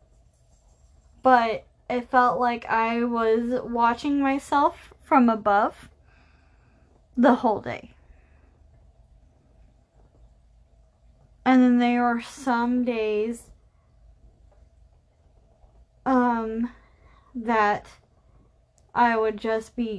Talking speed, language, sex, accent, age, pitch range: 75 wpm, English, female, American, 10-29, 195-250 Hz